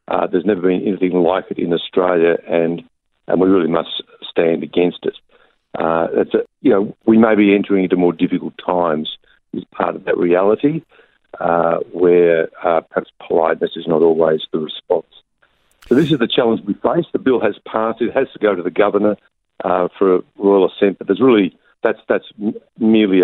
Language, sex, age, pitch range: English, male, 50-69, 85-100 Hz